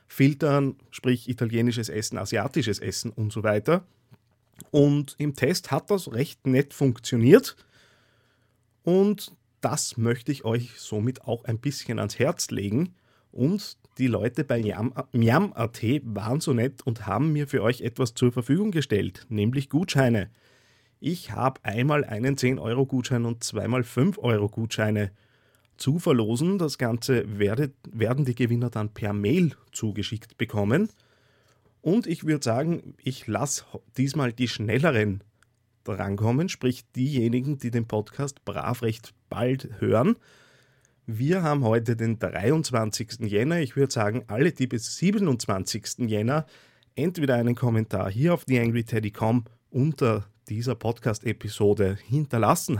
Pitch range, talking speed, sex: 110-140 Hz, 125 wpm, male